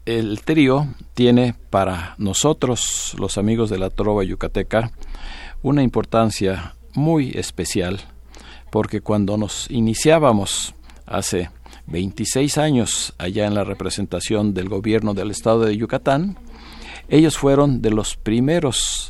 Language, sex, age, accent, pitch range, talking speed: Spanish, male, 50-69, Mexican, 95-120 Hz, 115 wpm